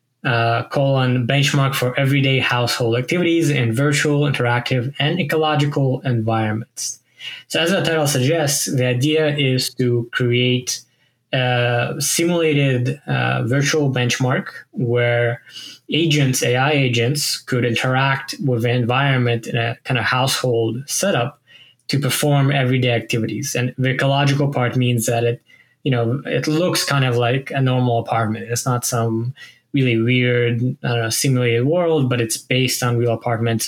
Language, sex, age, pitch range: English, male, 10-29, 120-140 Hz